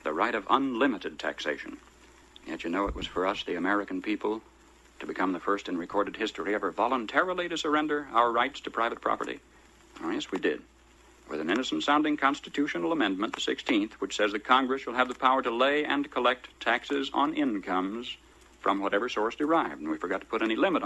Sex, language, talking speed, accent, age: male, English, 195 wpm, American, 60-79